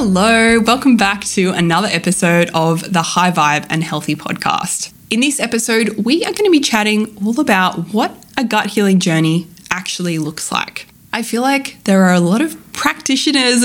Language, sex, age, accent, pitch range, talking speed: English, female, 20-39, Australian, 175-230 Hz, 180 wpm